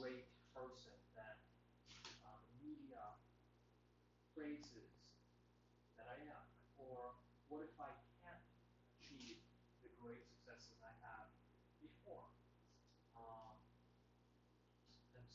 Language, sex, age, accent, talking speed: English, male, 30-49, American, 90 wpm